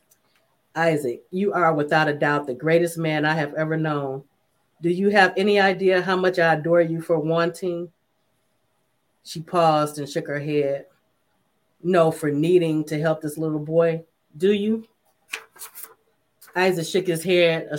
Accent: American